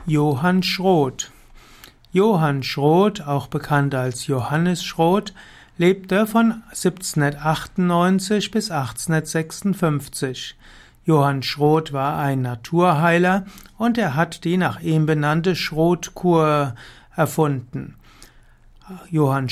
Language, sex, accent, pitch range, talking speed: German, male, German, 145-185 Hz, 90 wpm